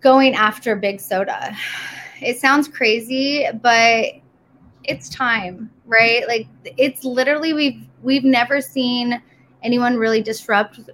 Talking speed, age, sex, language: 115 wpm, 20-39, female, English